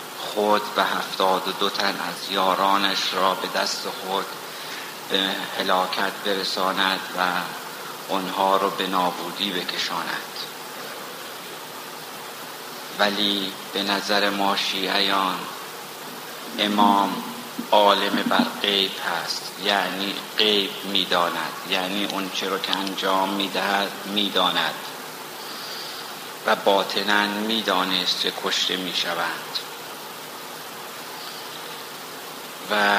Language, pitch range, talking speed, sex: Persian, 95-100 Hz, 85 wpm, male